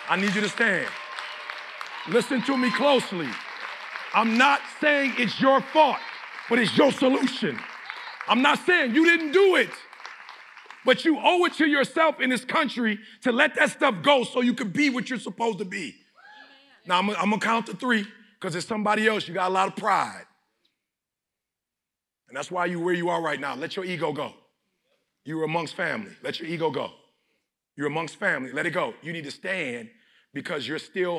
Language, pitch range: English, 180-265 Hz